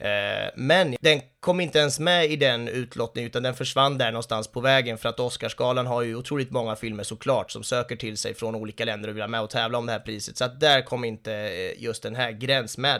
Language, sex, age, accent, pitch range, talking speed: Swedish, male, 30-49, native, 110-135 Hz, 235 wpm